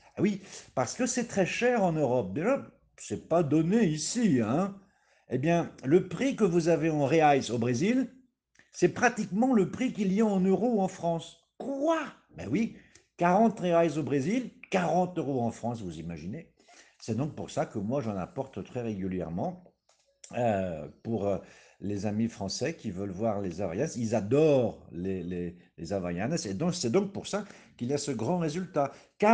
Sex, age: male, 50-69